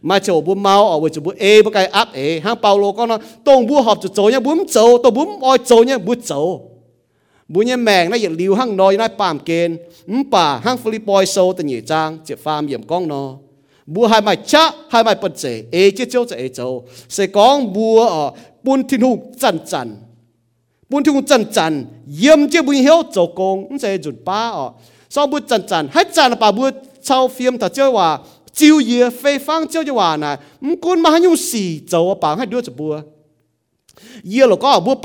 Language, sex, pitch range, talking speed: English, male, 175-275 Hz, 40 wpm